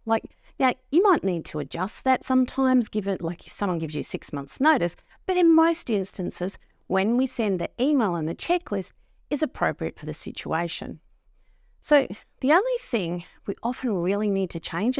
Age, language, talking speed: 50-69, English, 180 wpm